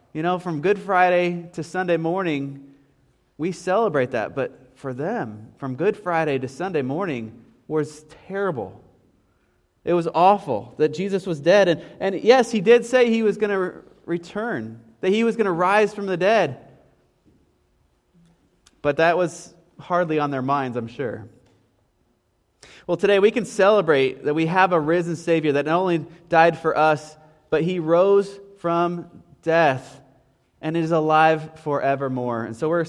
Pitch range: 155-225 Hz